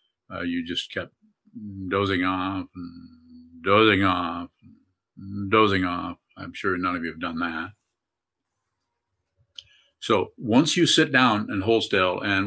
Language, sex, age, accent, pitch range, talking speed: English, male, 50-69, American, 95-115 Hz, 140 wpm